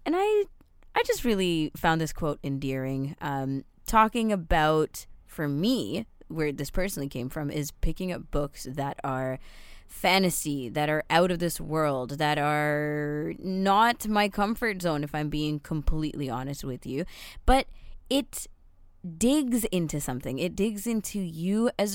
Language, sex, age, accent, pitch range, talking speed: English, female, 20-39, American, 150-205 Hz, 150 wpm